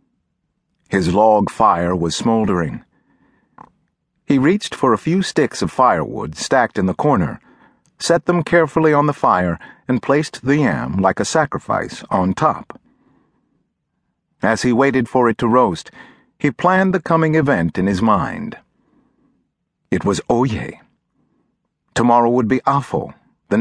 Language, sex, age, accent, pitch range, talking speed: English, male, 50-69, American, 115-160 Hz, 140 wpm